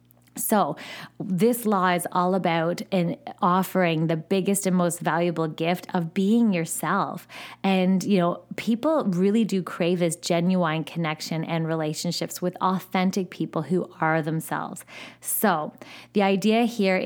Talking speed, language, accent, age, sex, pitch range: 135 wpm, English, American, 20-39, female, 170-205 Hz